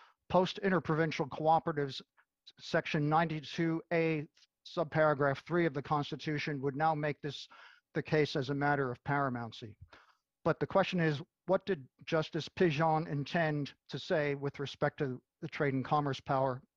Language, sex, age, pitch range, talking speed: English, male, 50-69, 140-165 Hz, 140 wpm